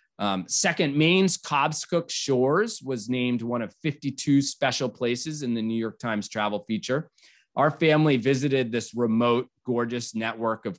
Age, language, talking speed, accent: 30-49, English, 150 wpm, American